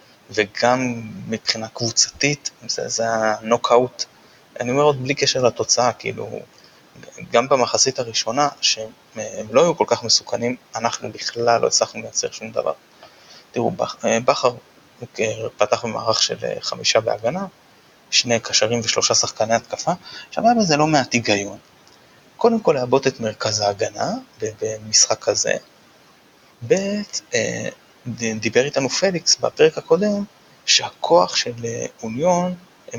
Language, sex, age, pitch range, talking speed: Hebrew, male, 20-39, 110-175 Hz, 115 wpm